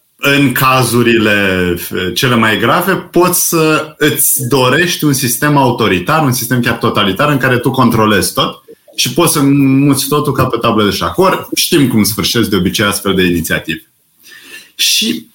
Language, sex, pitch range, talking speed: Romanian, male, 110-150 Hz, 155 wpm